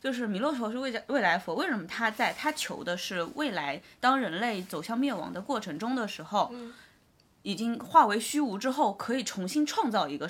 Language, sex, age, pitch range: Chinese, female, 20-39, 190-275 Hz